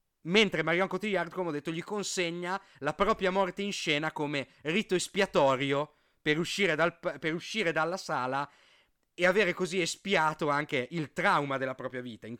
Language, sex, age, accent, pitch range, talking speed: Italian, male, 40-59, native, 125-170 Hz, 155 wpm